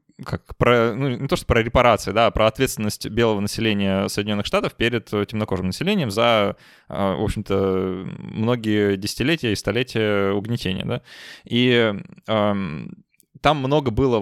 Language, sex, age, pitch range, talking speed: Russian, male, 20-39, 100-120 Hz, 130 wpm